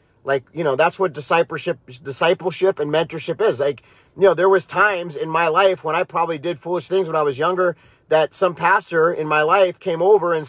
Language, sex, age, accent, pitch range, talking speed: English, male, 30-49, American, 145-190 Hz, 215 wpm